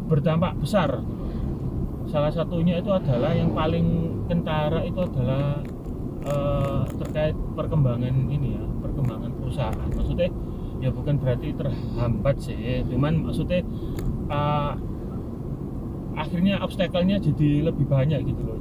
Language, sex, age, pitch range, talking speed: Indonesian, male, 30-49, 125-165 Hz, 110 wpm